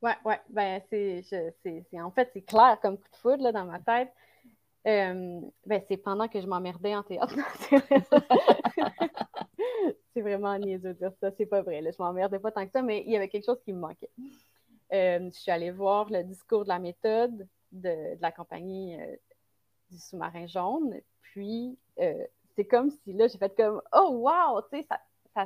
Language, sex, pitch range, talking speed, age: English, female, 190-250 Hz, 205 wpm, 30-49